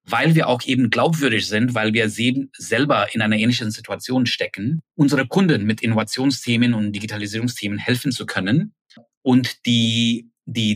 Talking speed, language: 145 wpm, German